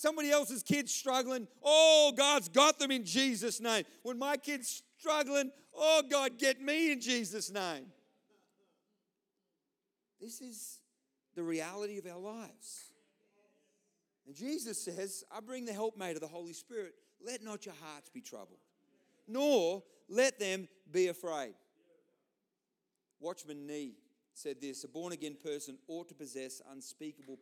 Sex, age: male, 40-59